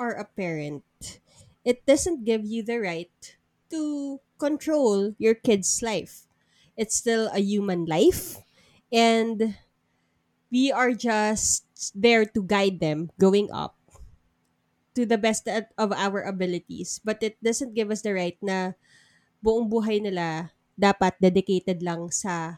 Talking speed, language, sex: 130 wpm, Filipino, female